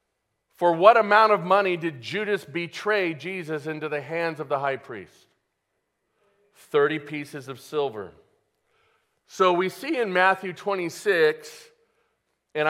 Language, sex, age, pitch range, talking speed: English, male, 40-59, 135-185 Hz, 130 wpm